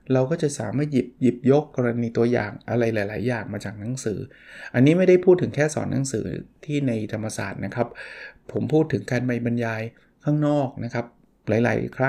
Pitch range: 115-145 Hz